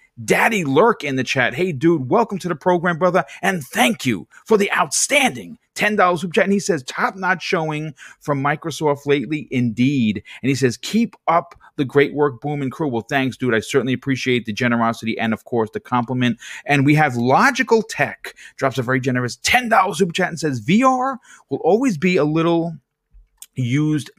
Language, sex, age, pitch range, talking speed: English, male, 30-49, 110-155 Hz, 190 wpm